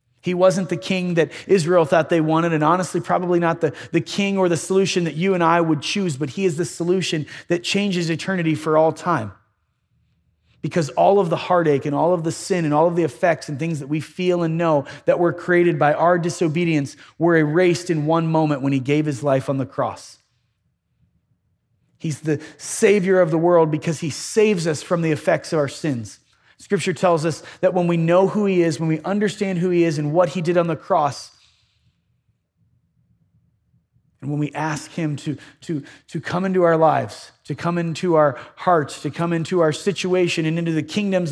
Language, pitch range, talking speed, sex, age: English, 150-180 Hz, 205 wpm, male, 30-49